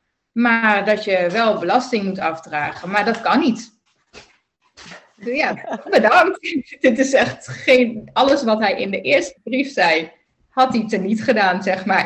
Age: 30-49